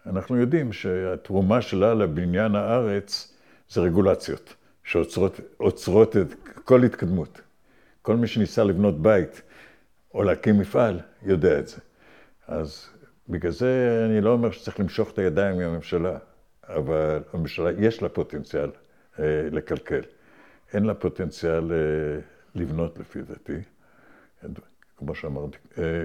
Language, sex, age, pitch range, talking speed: Hebrew, male, 60-79, 85-110 Hz, 115 wpm